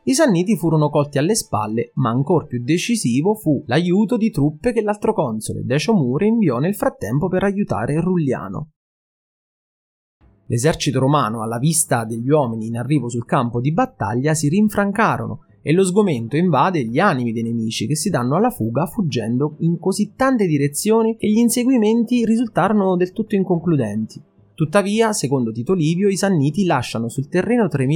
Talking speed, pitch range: 155 wpm, 120-195 Hz